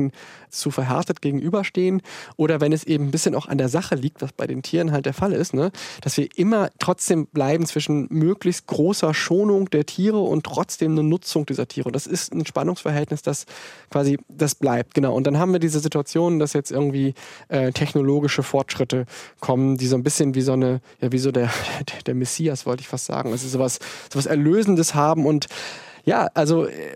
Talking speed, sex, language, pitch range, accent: 205 wpm, male, German, 140-160 Hz, German